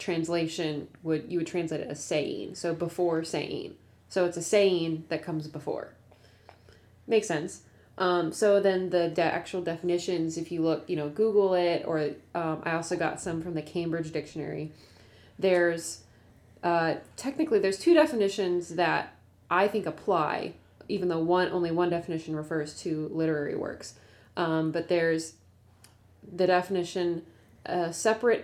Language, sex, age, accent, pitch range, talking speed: English, female, 20-39, American, 155-180 Hz, 150 wpm